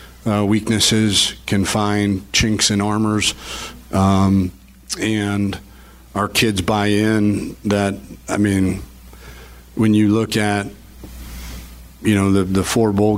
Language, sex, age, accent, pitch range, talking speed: English, male, 50-69, American, 95-100 Hz, 120 wpm